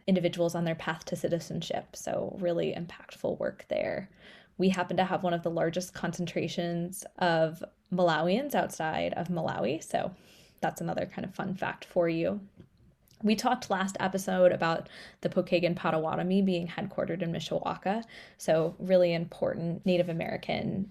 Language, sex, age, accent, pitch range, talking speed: English, female, 20-39, American, 165-190 Hz, 145 wpm